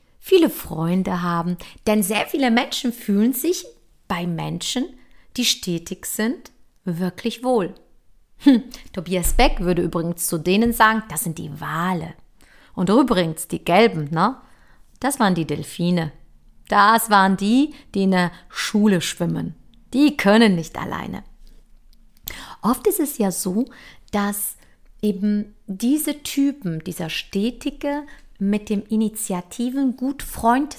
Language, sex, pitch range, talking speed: German, female, 180-255 Hz, 125 wpm